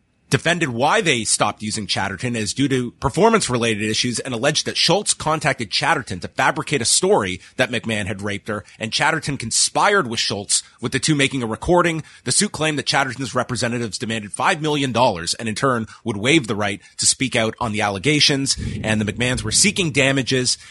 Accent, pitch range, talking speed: American, 100-130 Hz, 195 wpm